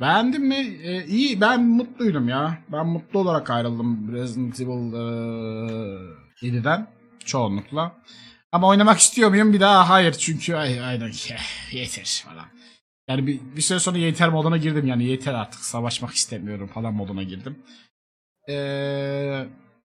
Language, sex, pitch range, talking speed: Turkish, male, 125-175 Hz, 135 wpm